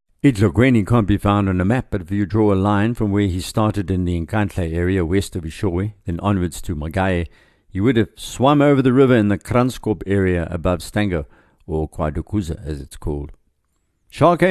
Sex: male